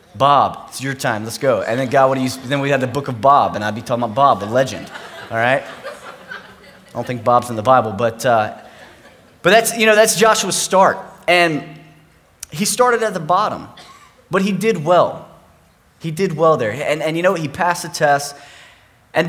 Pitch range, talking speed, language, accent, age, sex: 130-175 Hz, 210 wpm, English, American, 30-49, male